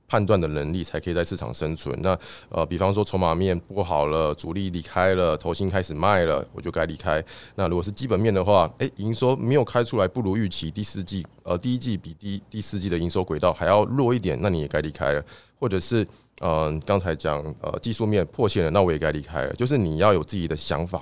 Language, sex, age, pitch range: Chinese, male, 20-39, 85-115 Hz